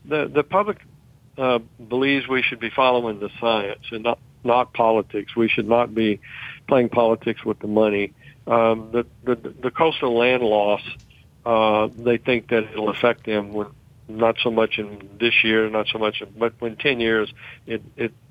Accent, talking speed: American, 175 wpm